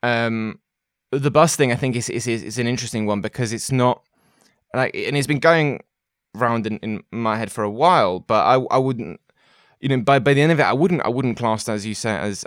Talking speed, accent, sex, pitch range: 245 wpm, British, male, 105-130 Hz